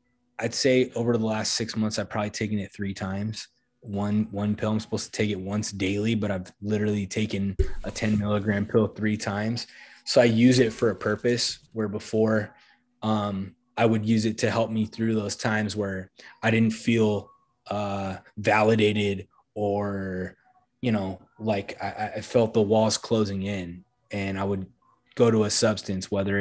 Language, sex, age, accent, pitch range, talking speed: English, male, 20-39, American, 95-115 Hz, 175 wpm